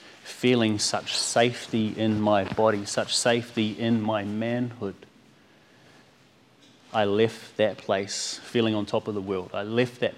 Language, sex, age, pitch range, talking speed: English, male, 30-49, 100-120 Hz, 140 wpm